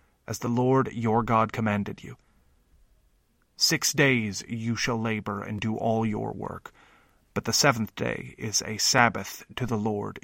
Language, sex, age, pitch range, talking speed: English, male, 30-49, 105-125 Hz, 160 wpm